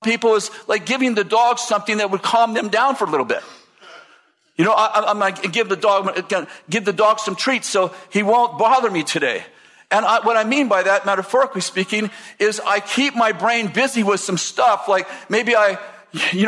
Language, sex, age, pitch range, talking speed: English, male, 50-69, 195-235 Hz, 210 wpm